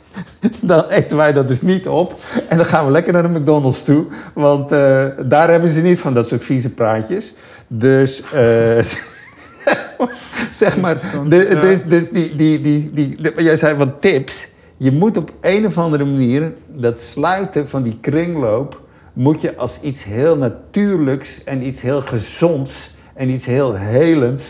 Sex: male